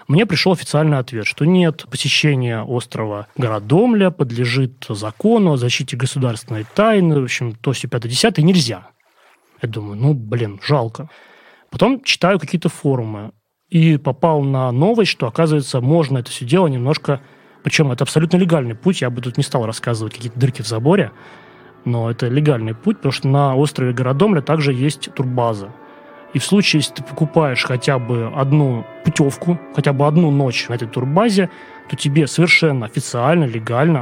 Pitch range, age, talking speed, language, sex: 120-155 Hz, 20-39, 160 wpm, Russian, male